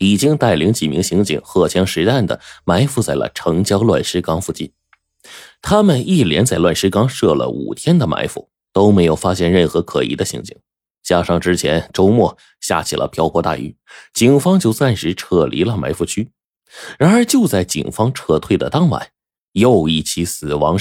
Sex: male